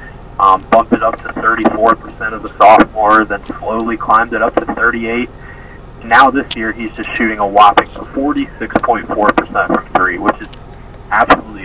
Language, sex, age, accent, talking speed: English, male, 20-39, American, 155 wpm